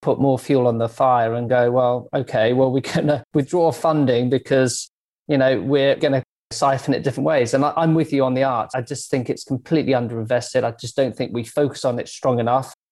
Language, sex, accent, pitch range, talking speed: English, male, British, 125-145 Hz, 230 wpm